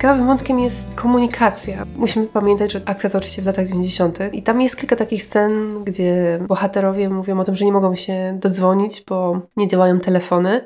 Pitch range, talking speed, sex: 185-220 Hz, 185 wpm, female